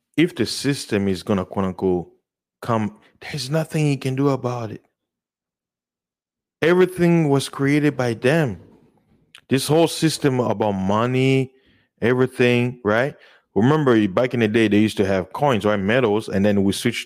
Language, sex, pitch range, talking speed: English, male, 95-130 Hz, 155 wpm